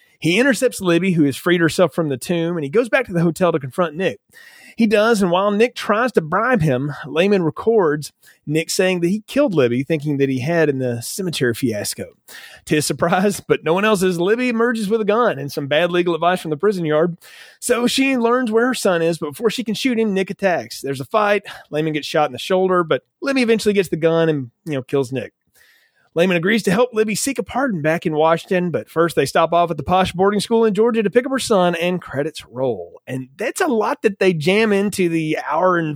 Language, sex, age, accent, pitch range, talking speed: English, male, 30-49, American, 150-210 Hz, 240 wpm